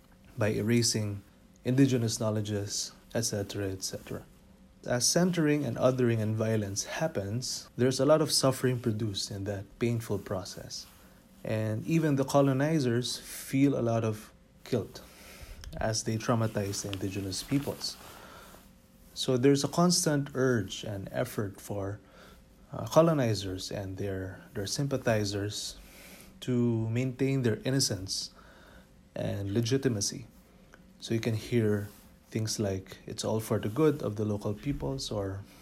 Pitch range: 105-130 Hz